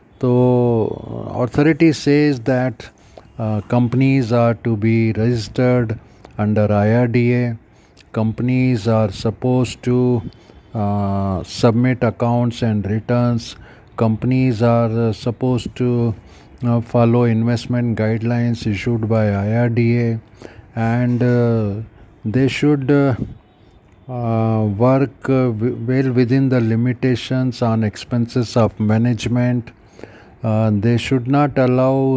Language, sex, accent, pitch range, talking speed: Hindi, male, native, 110-125 Hz, 100 wpm